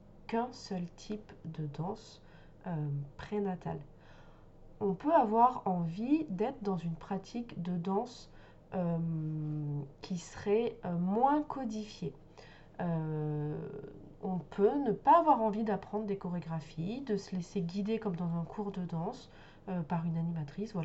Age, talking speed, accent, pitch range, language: 20-39, 130 wpm, French, 170-210 Hz, French